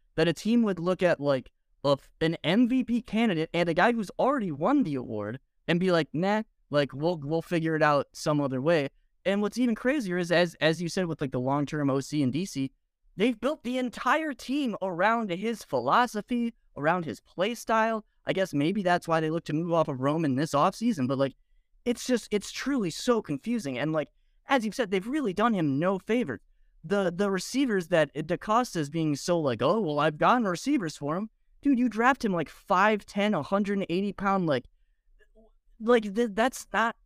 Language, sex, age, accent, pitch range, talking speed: English, male, 20-39, American, 155-230 Hz, 195 wpm